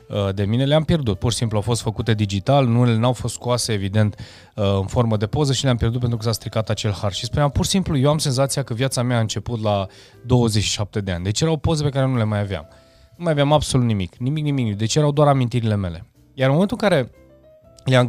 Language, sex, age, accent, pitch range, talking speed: Romanian, male, 20-39, native, 105-130 Hz, 240 wpm